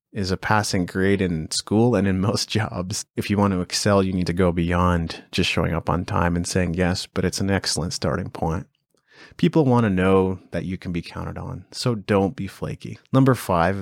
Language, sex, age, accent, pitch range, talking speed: English, male, 30-49, American, 85-105 Hz, 215 wpm